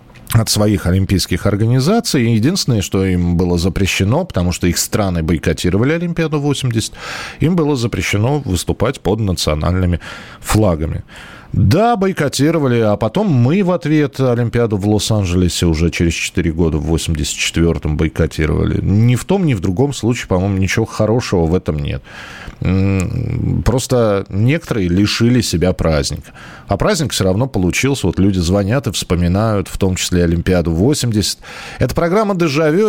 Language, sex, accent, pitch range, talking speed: Russian, male, native, 95-135 Hz, 135 wpm